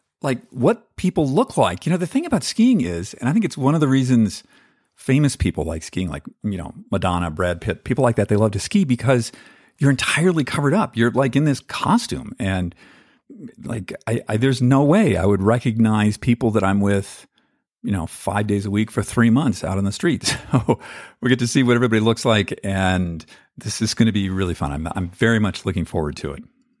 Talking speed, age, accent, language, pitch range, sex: 220 wpm, 50-69, American, English, 100-135 Hz, male